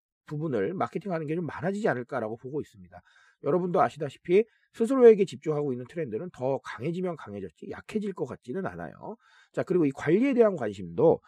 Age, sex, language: 40-59, male, Korean